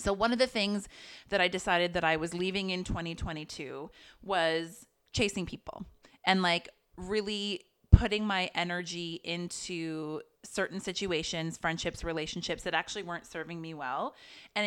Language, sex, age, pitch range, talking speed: English, female, 30-49, 165-205 Hz, 145 wpm